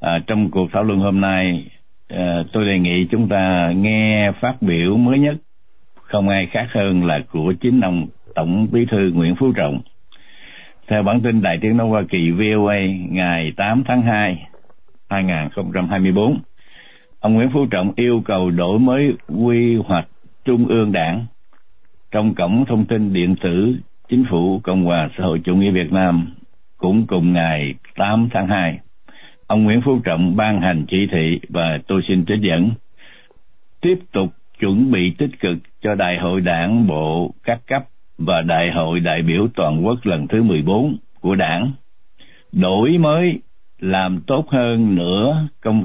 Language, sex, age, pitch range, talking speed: Vietnamese, male, 60-79, 90-115 Hz, 165 wpm